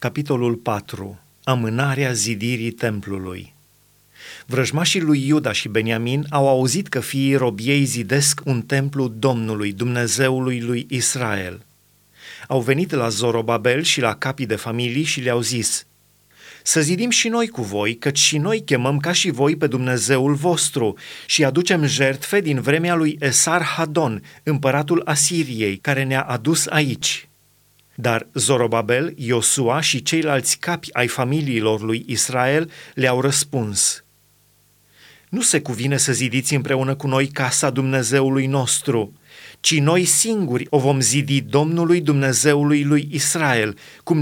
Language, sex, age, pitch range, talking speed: Romanian, male, 30-49, 120-150 Hz, 135 wpm